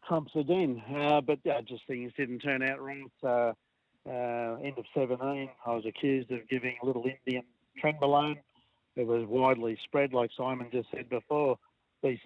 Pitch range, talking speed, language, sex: 120-135 Hz, 180 wpm, English, male